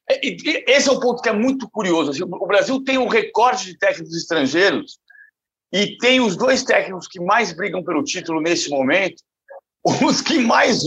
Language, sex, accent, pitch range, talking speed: Portuguese, male, Brazilian, 195-250 Hz, 170 wpm